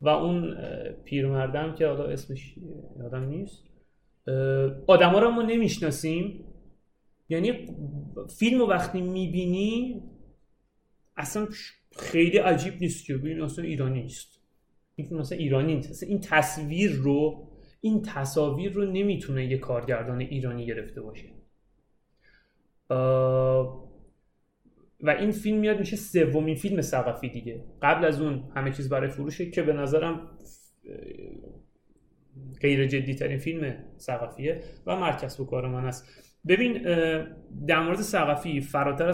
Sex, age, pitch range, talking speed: male, 30-49, 135-170 Hz, 115 wpm